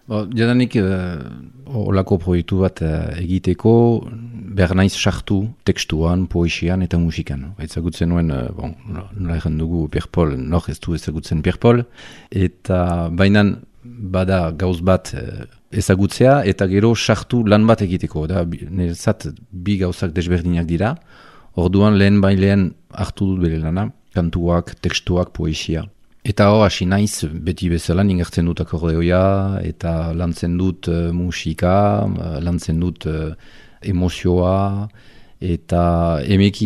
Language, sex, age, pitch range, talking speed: French, male, 40-59, 85-105 Hz, 85 wpm